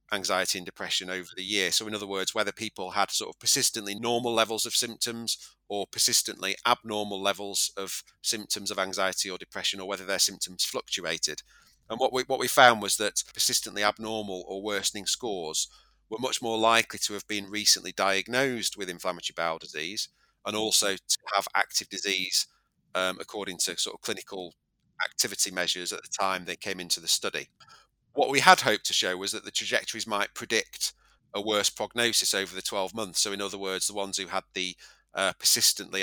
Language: English